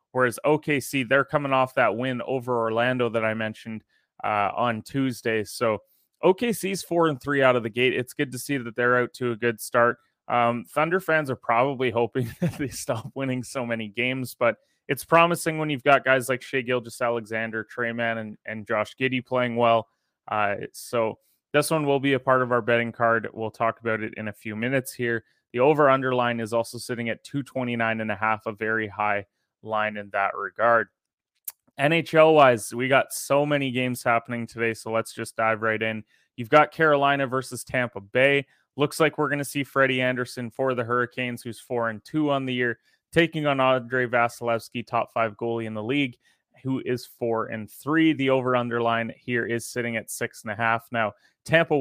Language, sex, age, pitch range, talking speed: English, male, 20-39, 115-135 Hz, 200 wpm